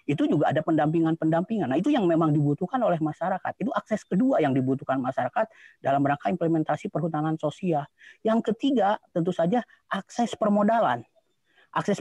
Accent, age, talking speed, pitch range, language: native, 30-49, 145 wpm, 150-195 Hz, Indonesian